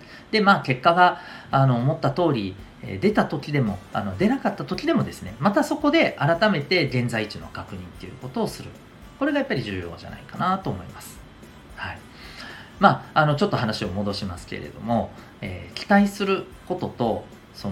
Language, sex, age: Japanese, male, 40-59